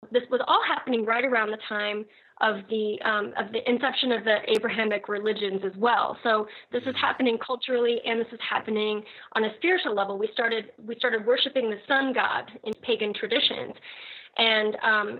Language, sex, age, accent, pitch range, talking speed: English, female, 30-49, American, 215-245 Hz, 180 wpm